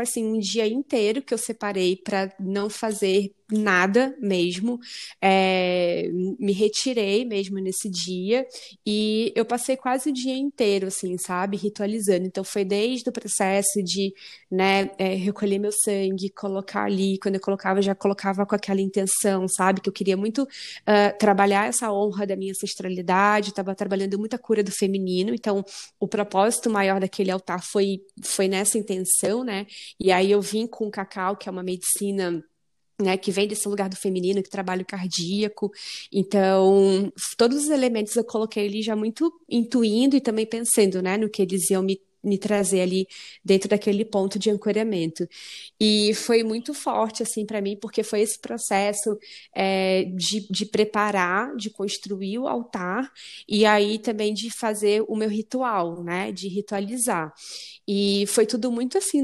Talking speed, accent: 165 wpm, Brazilian